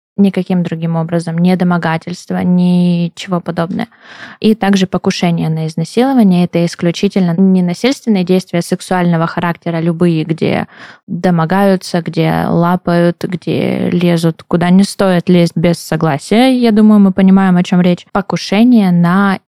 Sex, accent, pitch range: female, native, 175-205 Hz